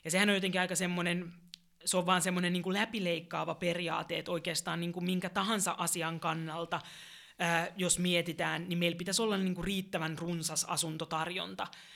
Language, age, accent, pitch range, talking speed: Finnish, 20-39, native, 165-180 Hz, 165 wpm